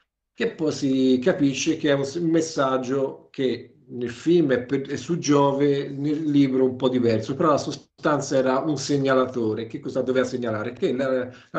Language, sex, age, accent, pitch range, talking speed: Italian, male, 50-69, native, 120-150 Hz, 175 wpm